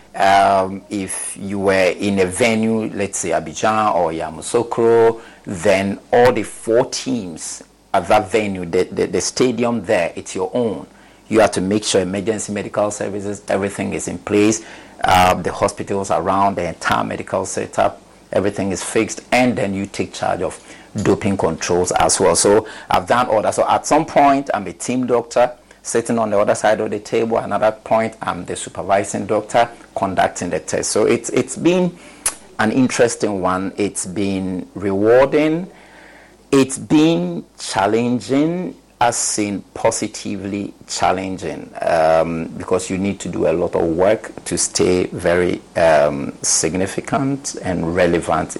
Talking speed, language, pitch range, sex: 155 wpm, English, 95-120 Hz, male